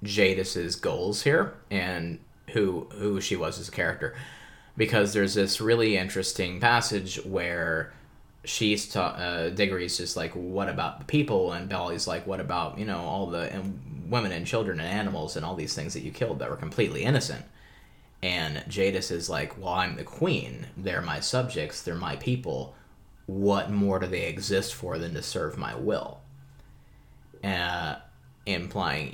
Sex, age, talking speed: male, 20-39, 165 wpm